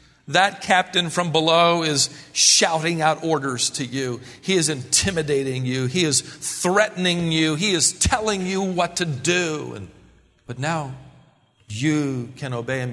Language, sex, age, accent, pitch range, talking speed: English, male, 50-69, American, 105-155 Hz, 150 wpm